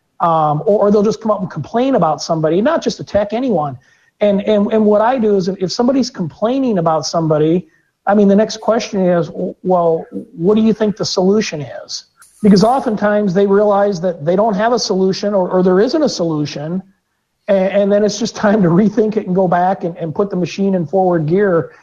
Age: 40-59